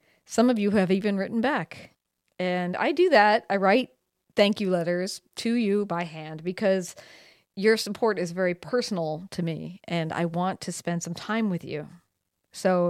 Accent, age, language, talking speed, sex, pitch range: American, 40-59, English, 175 wpm, female, 175-210 Hz